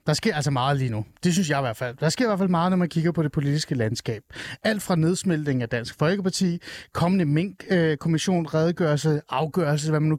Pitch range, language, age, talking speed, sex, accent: 135-185 Hz, Danish, 30-49, 225 wpm, male, native